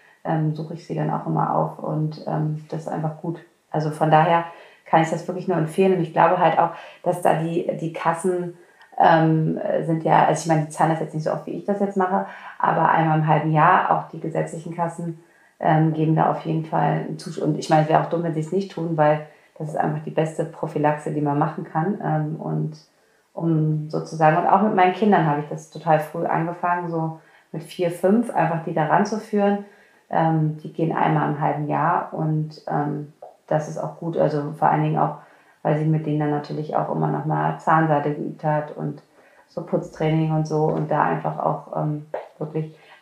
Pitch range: 150-170 Hz